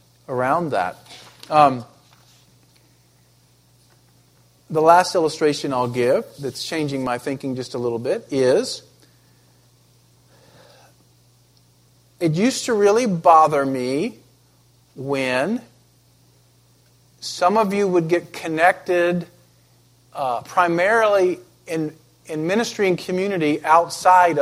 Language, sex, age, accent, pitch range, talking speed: English, male, 50-69, American, 125-205 Hz, 95 wpm